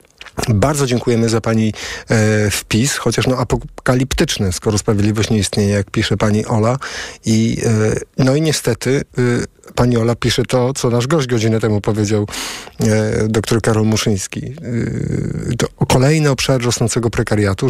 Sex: male